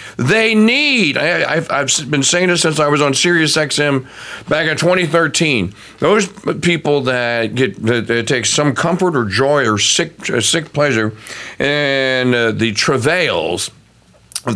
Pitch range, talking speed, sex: 125-175 Hz, 155 wpm, male